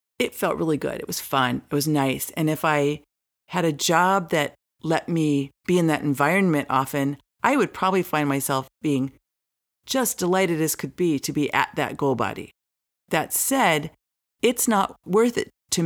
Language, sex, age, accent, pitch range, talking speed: English, female, 50-69, American, 150-190 Hz, 180 wpm